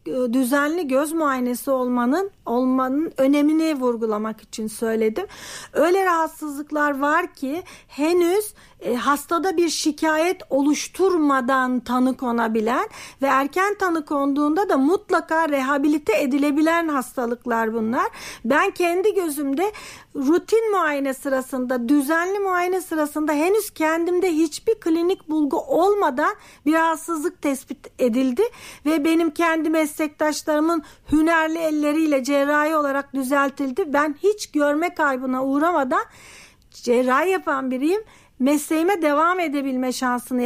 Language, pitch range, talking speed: Turkish, 265-335 Hz, 105 wpm